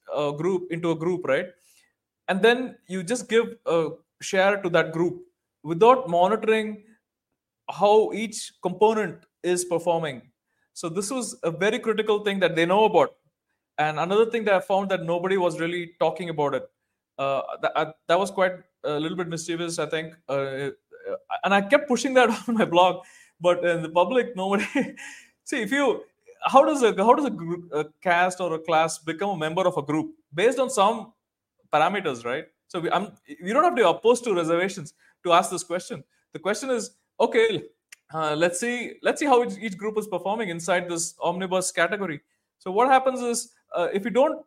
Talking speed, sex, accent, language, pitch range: 185 wpm, male, Indian, English, 170-230 Hz